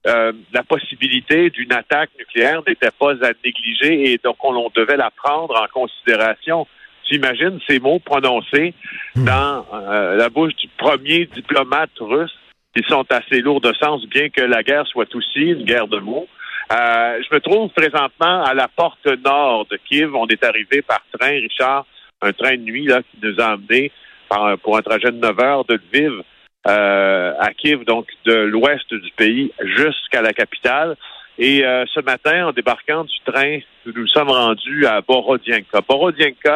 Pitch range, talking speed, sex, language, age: 115-150 Hz, 175 wpm, male, French, 50-69